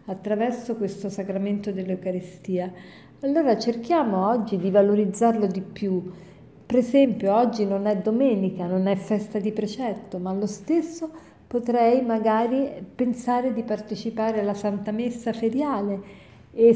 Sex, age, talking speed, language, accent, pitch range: female, 50-69, 125 wpm, Italian, native, 195-235 Hz